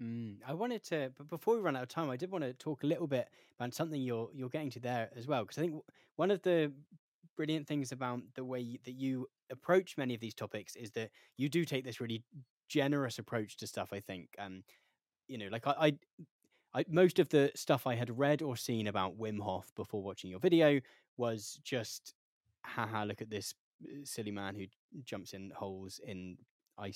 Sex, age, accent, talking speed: male, 10-29, British, 215 wpm